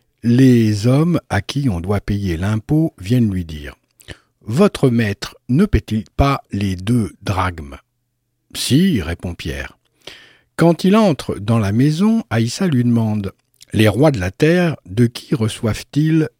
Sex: male